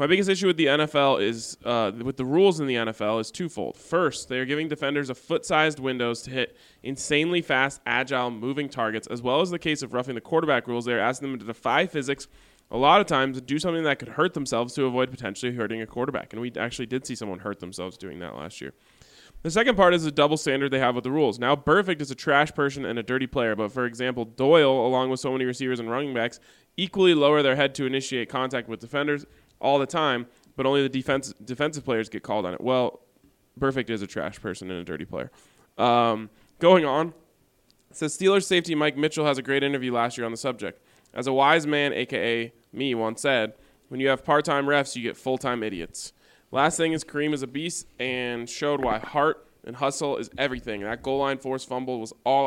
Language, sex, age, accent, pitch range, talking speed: English, male, 20-39, American, 120-145 Hz, 230 wpm